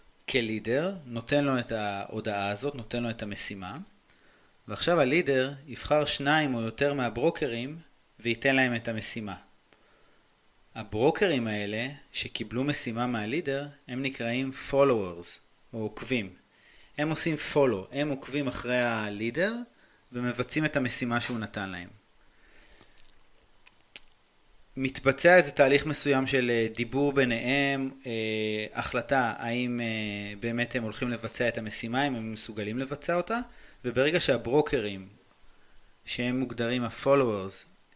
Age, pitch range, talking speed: 30-49, 115-140 Hz, 110 wpm